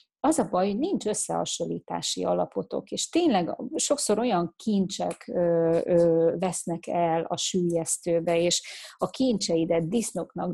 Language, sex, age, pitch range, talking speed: Hungarian, female, 30-49, 170-205 Hz, 115 wpm